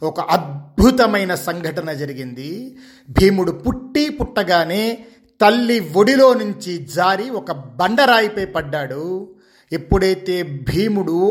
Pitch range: 175-240 Hz